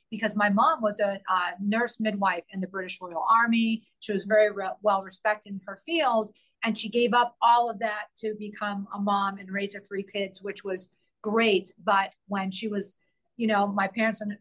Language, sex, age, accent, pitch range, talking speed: English, female, 40-59, American, 190-215 Hz, 200 wpm